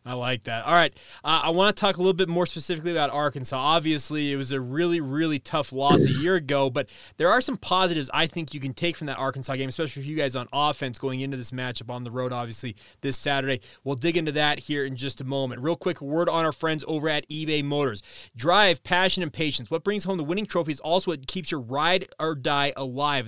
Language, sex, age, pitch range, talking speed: English, male, 30-49, 140-180 Hz, 245 wpm